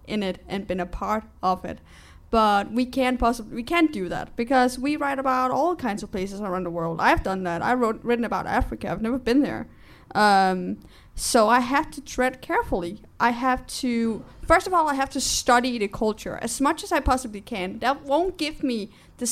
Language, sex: English, female